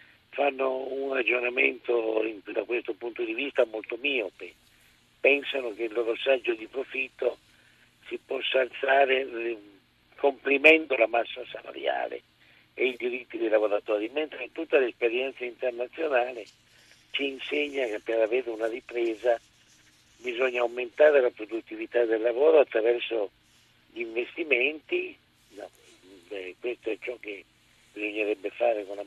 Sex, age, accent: male, 50-69, native